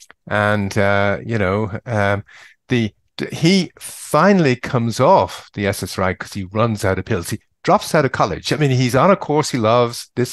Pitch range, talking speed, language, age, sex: 95-125 Hz, 185 wpm, English, 50-69, male